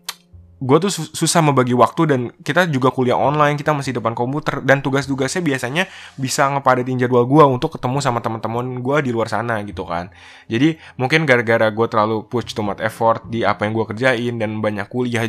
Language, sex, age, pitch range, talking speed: Indonesian, male, 20-39, 110-145 Hz, 185 wpm